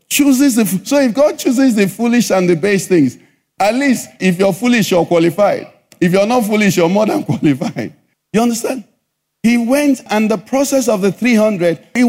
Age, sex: 50-69, male